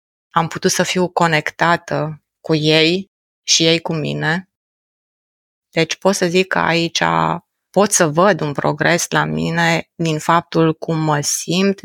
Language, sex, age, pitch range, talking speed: Romanian, female, 30-49, 150-180 Hz, 145 wpm